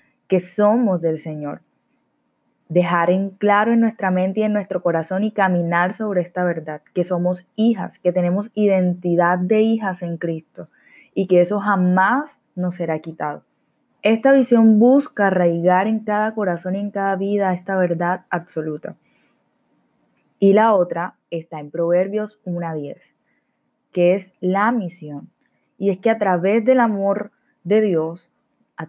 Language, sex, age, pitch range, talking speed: Spanish, female, 20-39, 175-215 Hz, 150 wpm